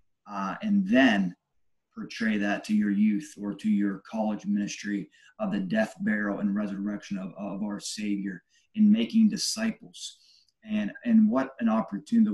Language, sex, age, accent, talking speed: English, male, 30-49, American, 150 wpm